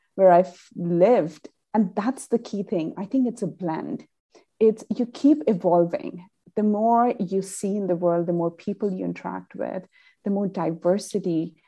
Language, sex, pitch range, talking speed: English, female, 185-245 Hz, 170 wpm